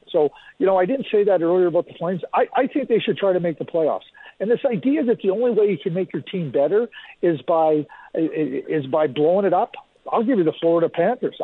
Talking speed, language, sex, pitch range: 245 wpm, English, male, 145-185 Hz